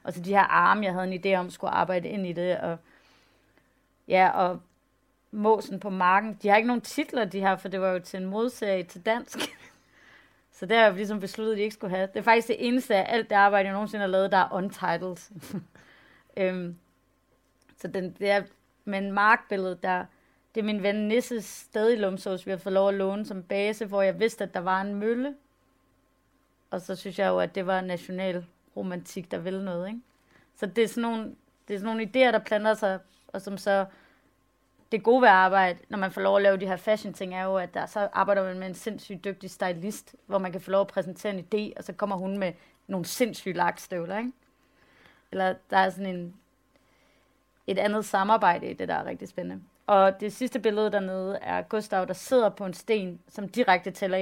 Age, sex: 30-49, female